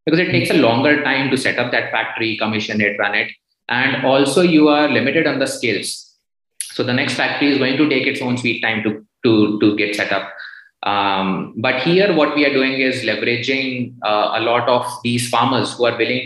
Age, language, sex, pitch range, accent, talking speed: 20-39, English, male, 110-135 Hz, Indian, 215 wpm